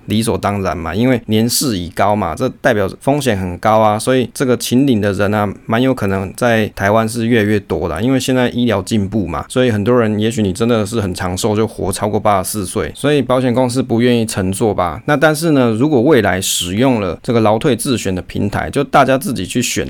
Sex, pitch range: male, 100-125 Hz